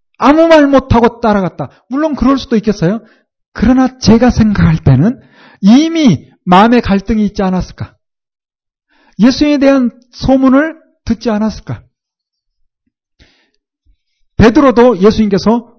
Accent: native